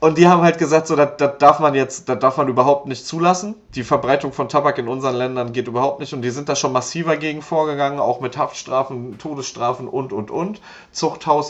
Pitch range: 120-150 Hz